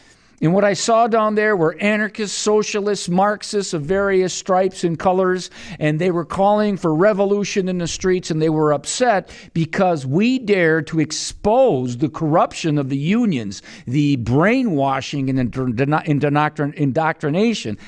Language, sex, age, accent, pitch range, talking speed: English, male, 50-69, American, 140-195 Hz, 140 wpm